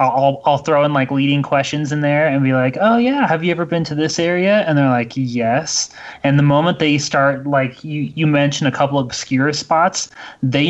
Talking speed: 225 wpm